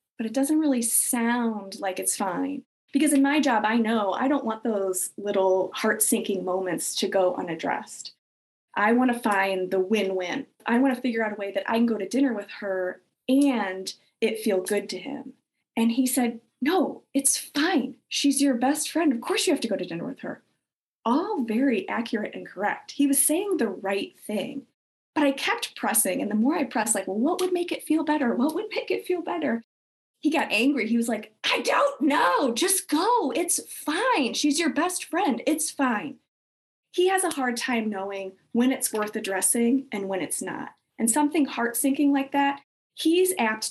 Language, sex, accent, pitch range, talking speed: English, female, American, 220-290 Hz, 200 wpm